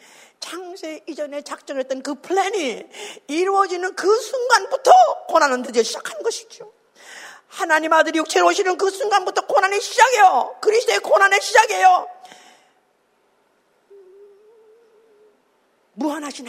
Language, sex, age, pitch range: Korean, female, 40-59, 300-415 Hz